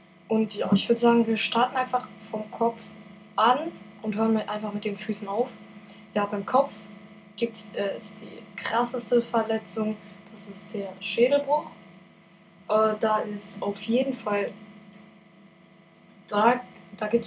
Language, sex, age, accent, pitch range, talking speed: German, female, 10-29, German, 200-235 Hz, 145 wpm